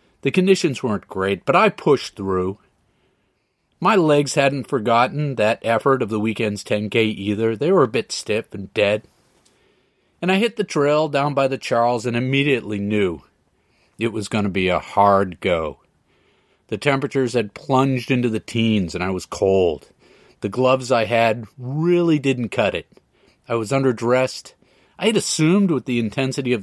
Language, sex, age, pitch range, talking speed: English, male, 40-59, 105-140 Hz, 170 wpm